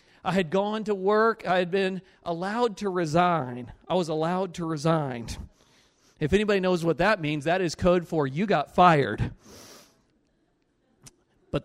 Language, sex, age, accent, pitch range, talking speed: English, male, 40-59, American, 155-195 Hz, 155 wpm